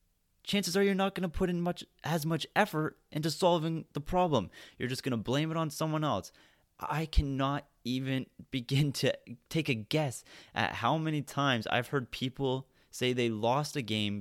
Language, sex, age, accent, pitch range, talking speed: English, male, 30-49, American, 105-155 Hz, 190 wpm